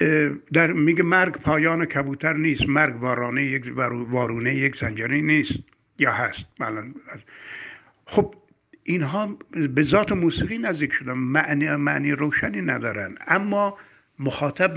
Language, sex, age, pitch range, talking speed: Persian, male, 60-79, 125-160 Hz, 120 wpm